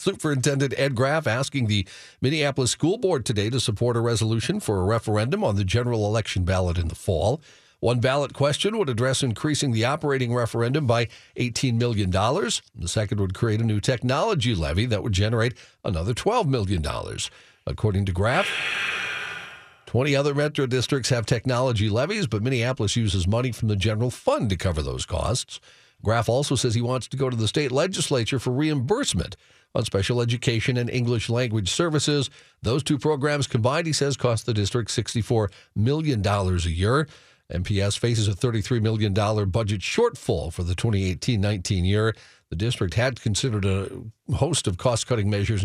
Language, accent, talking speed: English, American, 165 wpm